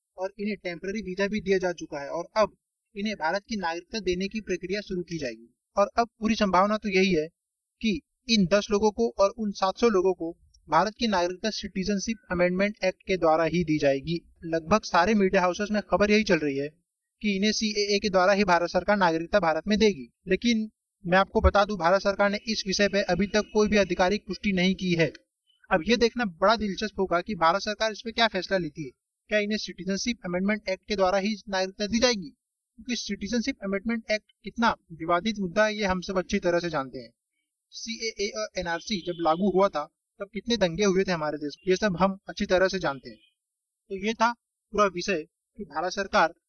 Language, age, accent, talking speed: Hindi, 30-49, native, 155 wpm